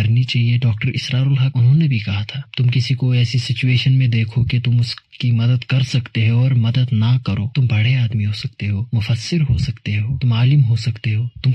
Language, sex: Hindi, male